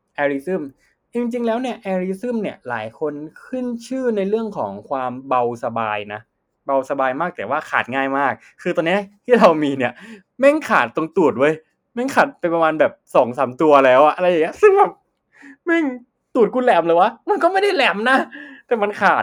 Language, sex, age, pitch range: Thai, male, 20-39, 135-210 Hz